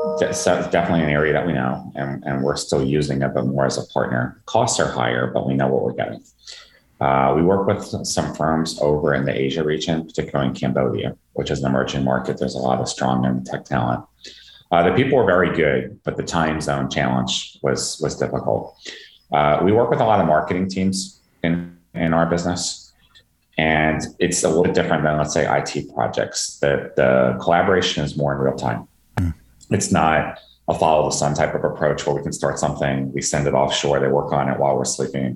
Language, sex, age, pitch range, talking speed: English, male, 30-49, 65-80 Hz, 215 wpm